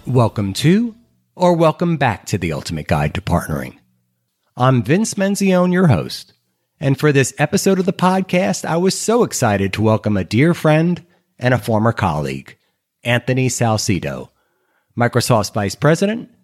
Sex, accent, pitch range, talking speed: male, American, 110-165 Hz, 150 wpm